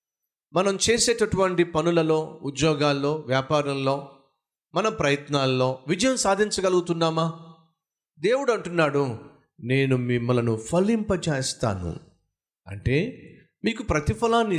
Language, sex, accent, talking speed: Telugu, male, native, 70 wpm